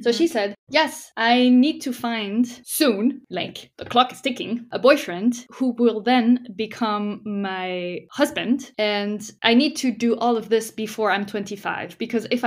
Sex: female